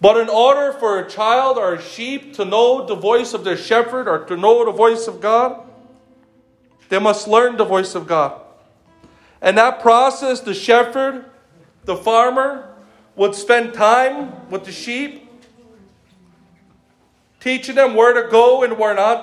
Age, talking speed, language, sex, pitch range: 40-59, 160 wpm, English, male, 205-260 Hz